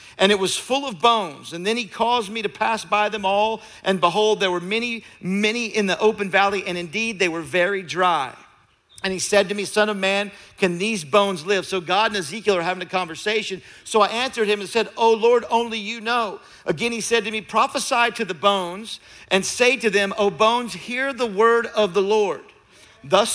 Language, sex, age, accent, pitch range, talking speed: English, male, 50-69, American, 195-230 Hz, 220 wpm